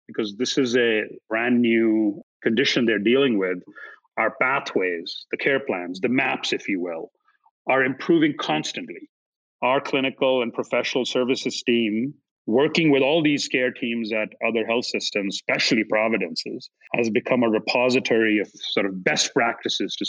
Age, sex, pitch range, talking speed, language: 40-59, male, 115-140 Hz, 150 wpm, English